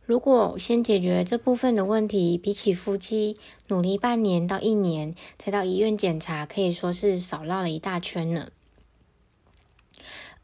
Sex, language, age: female, Chinese, 20-39